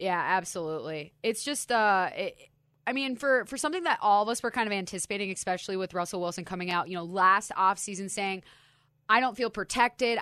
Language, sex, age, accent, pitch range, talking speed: English, female, 20-39, American, 160-195 Hz, 195 wpm